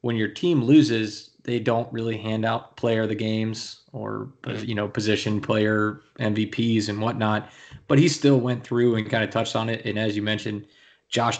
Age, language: 20-39, English